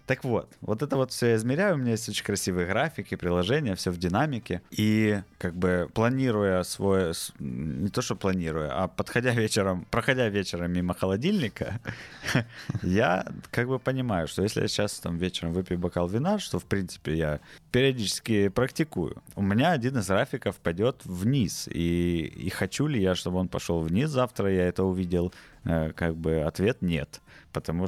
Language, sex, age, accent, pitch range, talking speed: Ukrainian, male, 20-39, native, 85-115 Hz, 160 wpm